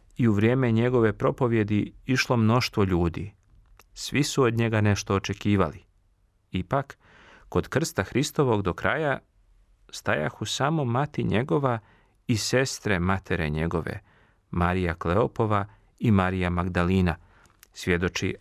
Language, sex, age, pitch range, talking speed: Croatian, male, 40-59, 95-115 Hz, 110 wpm